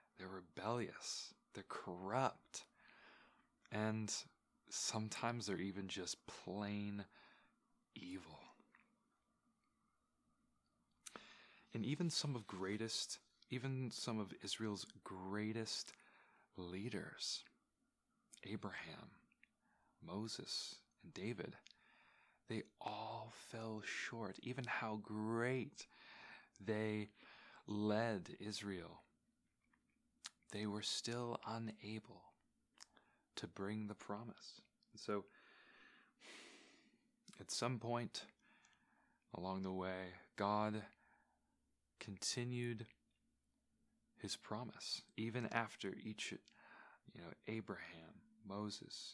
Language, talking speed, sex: English, 75 wpm, male